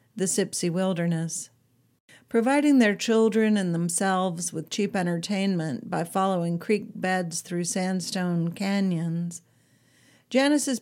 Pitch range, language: 175-210 Hz, English